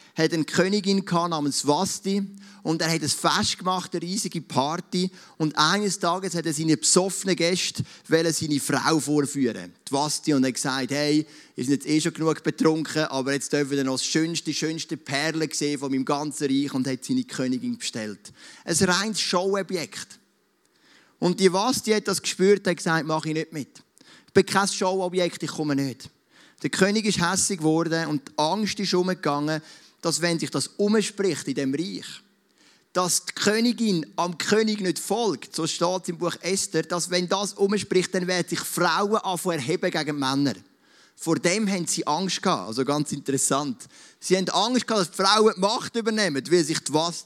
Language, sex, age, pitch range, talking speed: German, male, 30-49, 145-190 Hz, 185 wpm